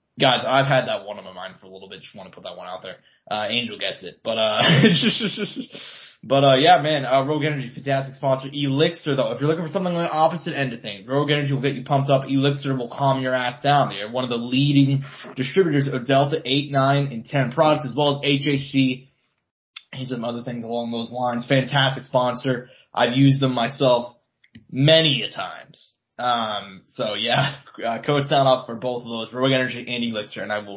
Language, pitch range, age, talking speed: English, 125-145 Hz, 20-39, 220 wpm